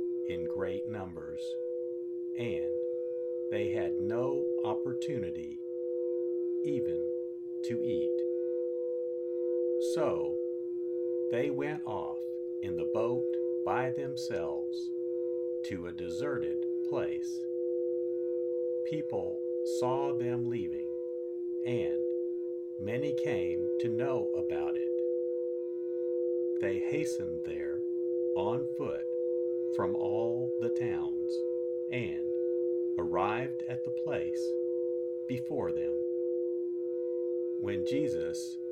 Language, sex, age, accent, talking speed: English, male, 50-69, American, 80 wpm